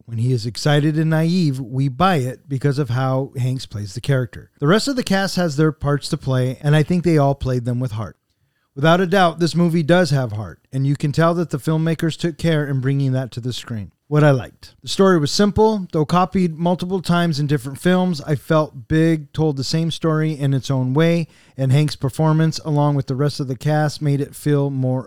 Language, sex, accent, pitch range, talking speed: English, male, American, 130-170 Hz, 230 wpm